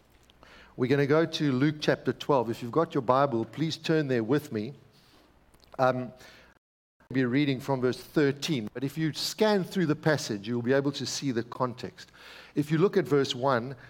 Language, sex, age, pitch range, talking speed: English, male, 60-79, 130-165 Hz, 195 wpm